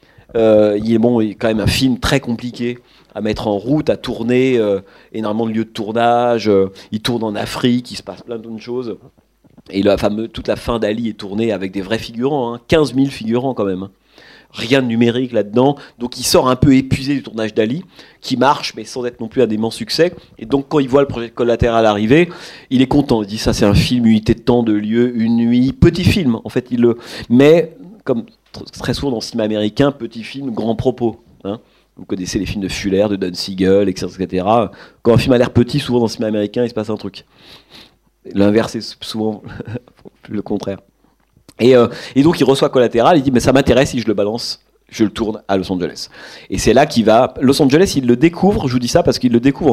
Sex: male